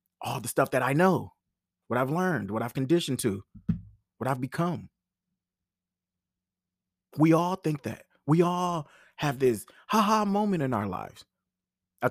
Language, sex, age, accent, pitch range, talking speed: English, male, 30-49, American, 95-155 Hz, 150 wpm